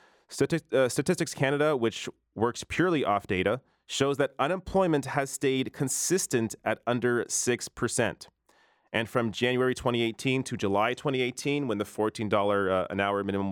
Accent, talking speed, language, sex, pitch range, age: American, 140 wpm, English, male, 110-140 Hz, 30-49